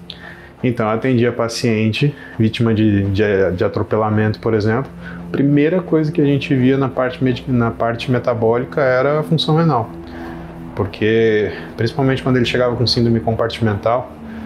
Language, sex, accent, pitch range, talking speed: Portuguese, male, Brazilian, 110-130 Hz, 135 wpm